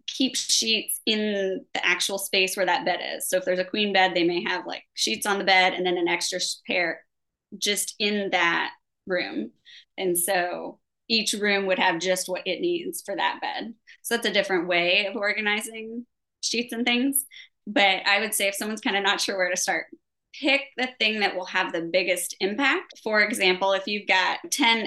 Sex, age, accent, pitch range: female, 20-39, American, 185-235 Hz